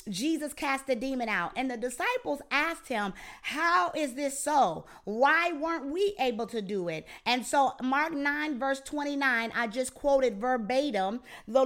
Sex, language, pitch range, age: female, English, 240-300 Hz, 40-59